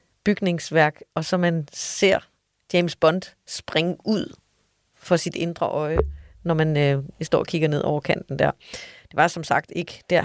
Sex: female